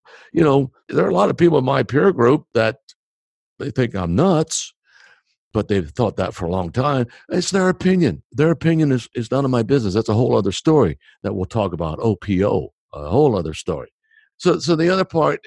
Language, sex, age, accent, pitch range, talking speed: English, male, 60-79, American, 100-150 Hz, 215 wpm